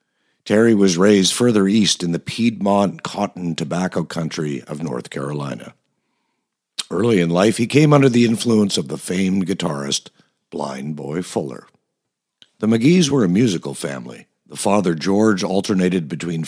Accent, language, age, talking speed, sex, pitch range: American, English, 50-69, 145 wpm, male, 80-105 Hz